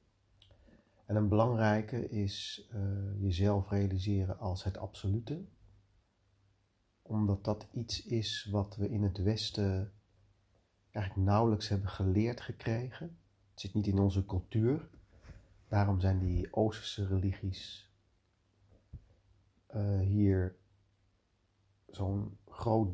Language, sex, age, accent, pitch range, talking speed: Dutch, male, 40-59, Dutch, 95-105 Hz, 100 wpm